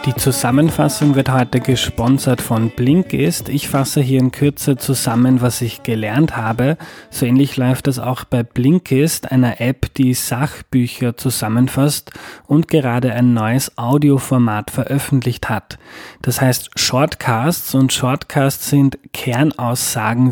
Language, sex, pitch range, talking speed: German, male, 120-140 Hz, 125 wpm